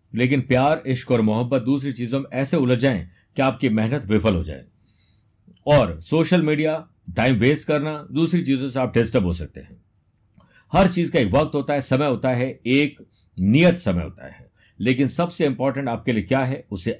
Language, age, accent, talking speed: Hindi, 50-69, native, 190 wpm